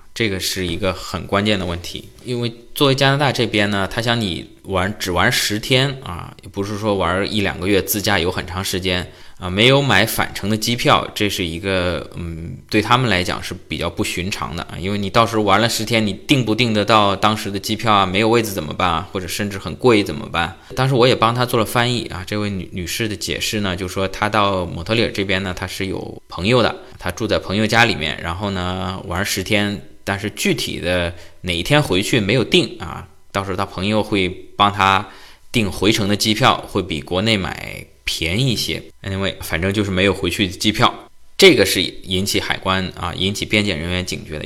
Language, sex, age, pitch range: Chinese, male, 20-39, 95-115 Hz